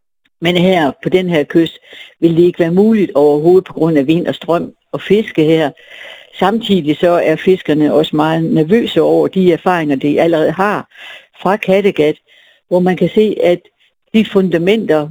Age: 60-79